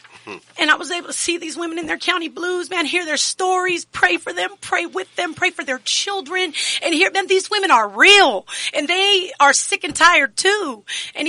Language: English